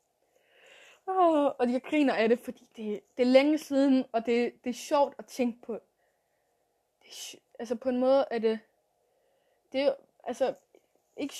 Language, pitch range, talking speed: Danish, 230-285 Hz, 170 wpm